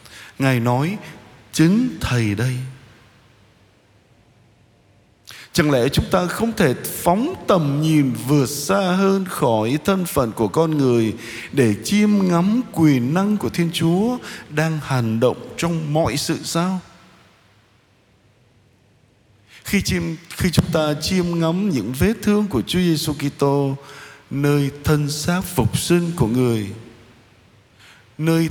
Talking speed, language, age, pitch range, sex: 125 wpm, Vietnamese, 20-39, 115-175 Hz, male